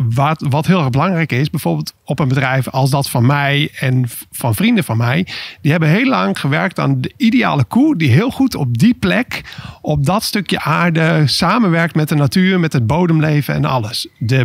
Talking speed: 200 wpm